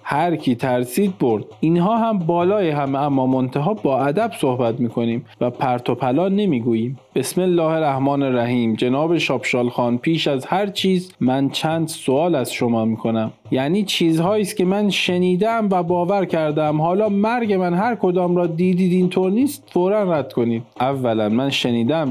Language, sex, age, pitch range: Persian, male, 40-59, 135-180 Hz